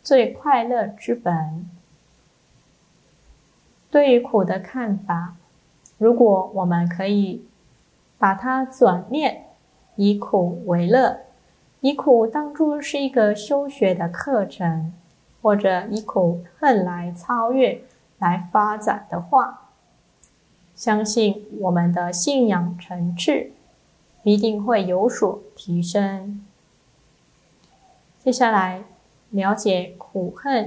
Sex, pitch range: female, 175-240 Hz